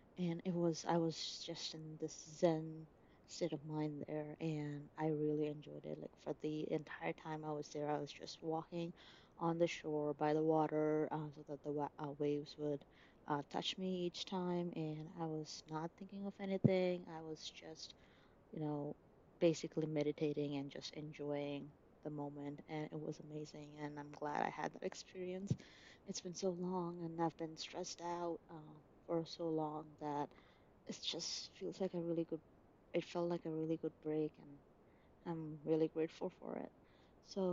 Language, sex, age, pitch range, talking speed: English, female, 20-39, 150-170 Hz, 180 wpm